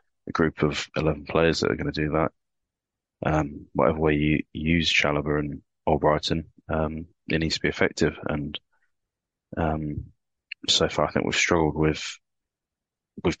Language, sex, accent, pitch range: English, male, British, 75-85 Hz